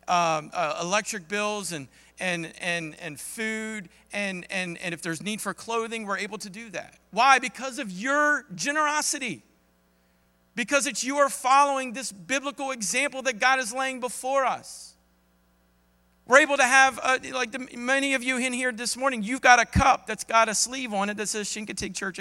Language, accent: English, American